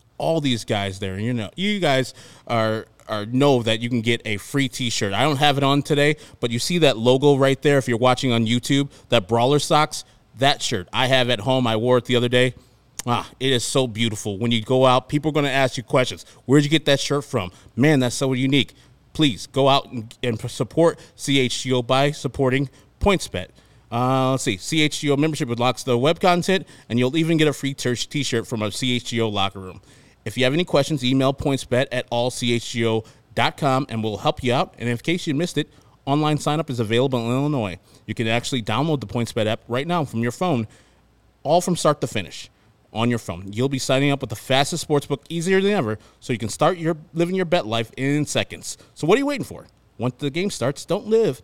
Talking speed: 225 wpm